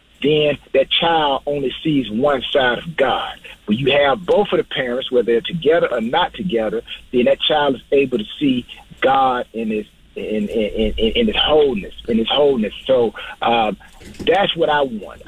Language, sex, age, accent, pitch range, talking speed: English, male, 40-59, American, 135-200 Hz, 170 wpm